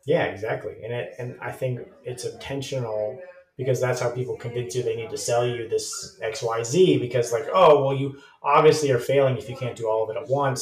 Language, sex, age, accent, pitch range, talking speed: English, male, 30-49, American, 125-180 Hz, 230 wpm